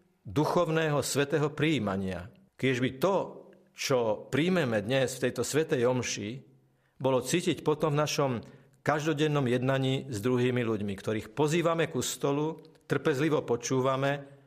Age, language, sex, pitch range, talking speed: 50-69, Slovak, male, 115-155 Hz, 115 wpm